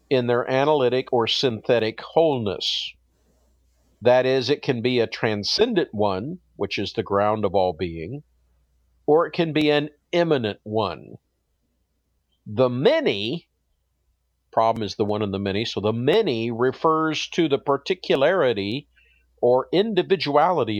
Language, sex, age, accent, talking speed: English, male, 50-69, American, 135 wpm